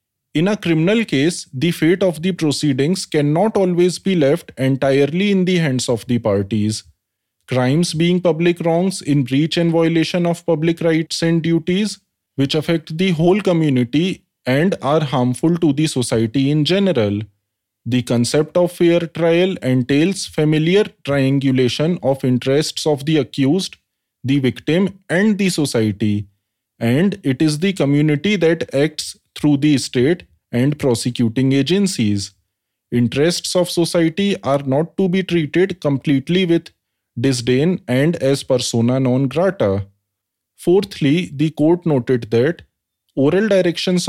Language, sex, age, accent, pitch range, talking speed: English, male, 20-39, Indian, 125-175 Hz, 135 wpm